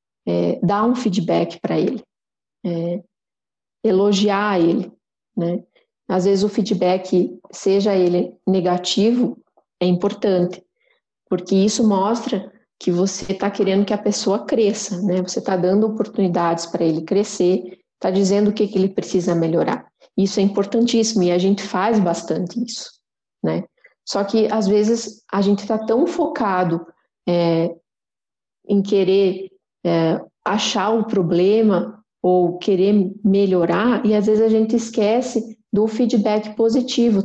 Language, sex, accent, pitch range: Portuguese, female, Brazilian, 190-225 Hz